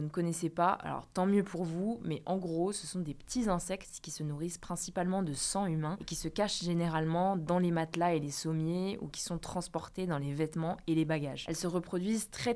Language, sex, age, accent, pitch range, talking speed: French, female, 20-39, French, 160-190 Hz, 225 wpm